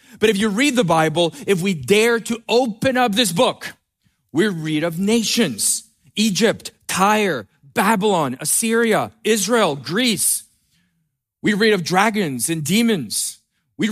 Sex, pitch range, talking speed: male, 155-215 Hz, 135 wpm